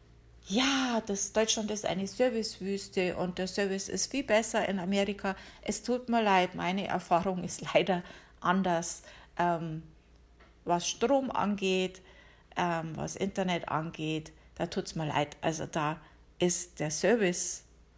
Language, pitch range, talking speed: German, 170-205 Hz, 135 wpm